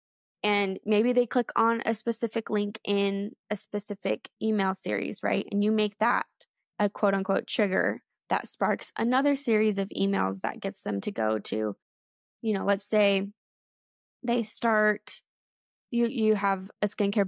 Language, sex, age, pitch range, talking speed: English, female, 20-39, 200-230 Hz, 155 wpm